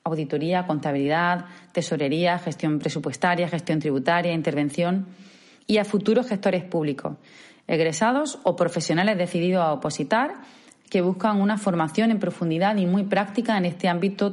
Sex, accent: female, Spanish